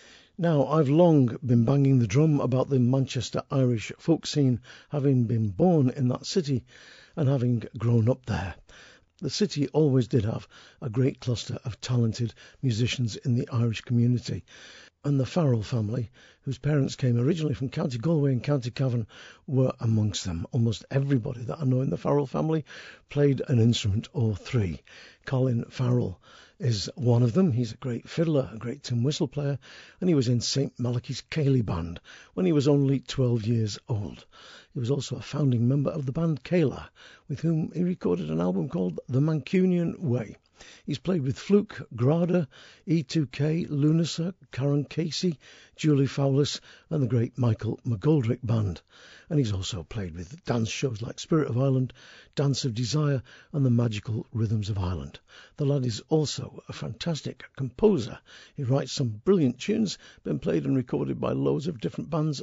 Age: 50-69